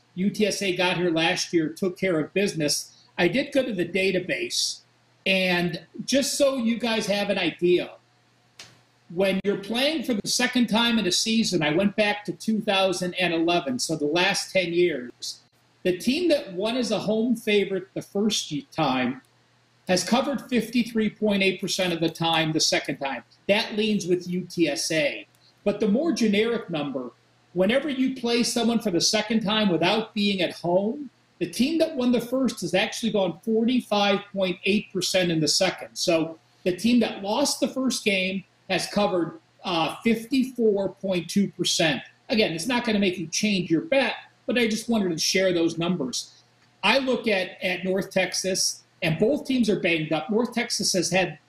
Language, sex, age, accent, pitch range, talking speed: English, male, 50-69, American, 175-230 Hz, 165 wpm